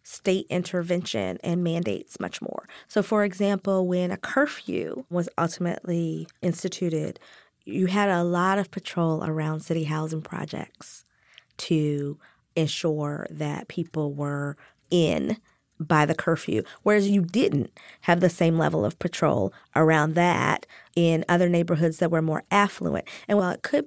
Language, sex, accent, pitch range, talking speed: English, female, American, 170-215 Hz, 140 wpm